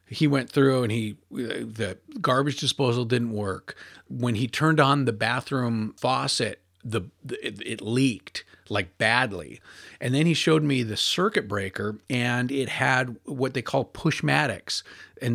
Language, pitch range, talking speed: English, 110-140 Hz, 155 wpm